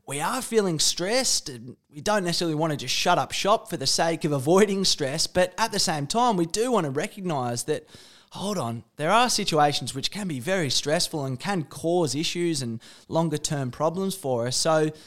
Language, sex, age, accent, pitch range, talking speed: English, male, 20-39, Australian, 140-185 Hz, 205 wpm